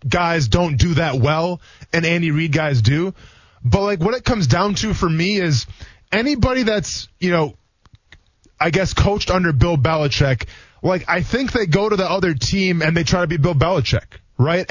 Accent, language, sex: American, English, male